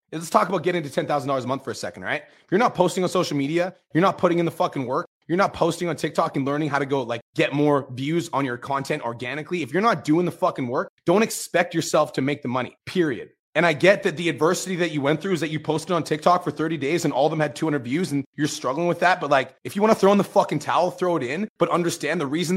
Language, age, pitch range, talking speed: English, 30-49, 140-180 Hz, 285 wpm